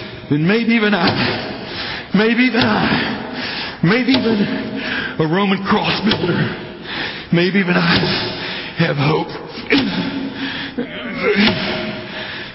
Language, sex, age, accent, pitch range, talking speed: English, male, 60-79, American, 145-175 Hz, 90 wpm